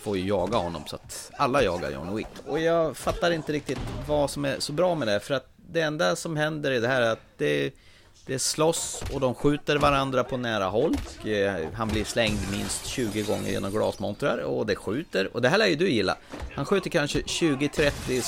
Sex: male